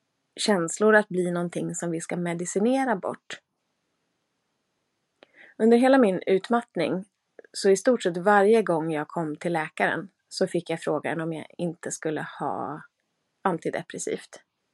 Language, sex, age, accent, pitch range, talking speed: Swedish, female, 30-49, native, 175-225 Hz, 135 wpm